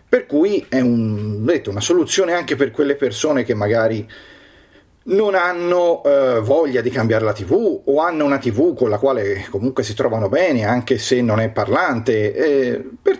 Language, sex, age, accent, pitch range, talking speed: Italian, male, 40-59, native, 120-185 Hz, 165 wpm